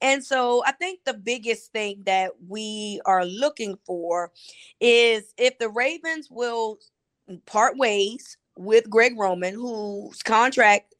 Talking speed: 130 wpm